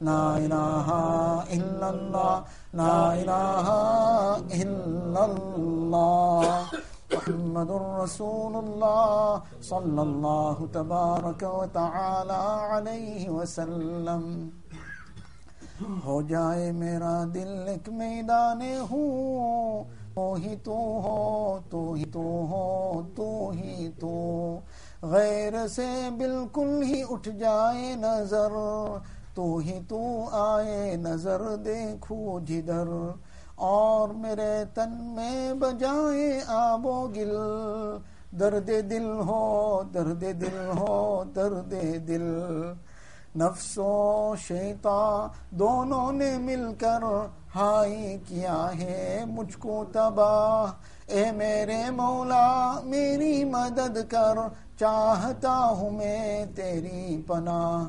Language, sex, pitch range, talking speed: English, male, 175-220 Hz, 80 wpm